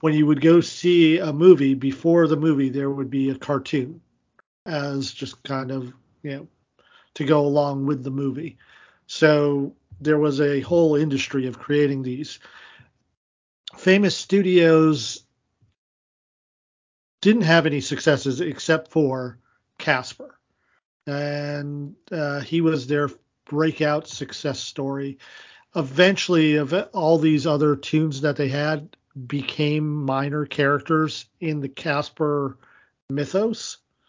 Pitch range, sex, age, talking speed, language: 140-160 Hz, male, 40-59, 120 wpm, English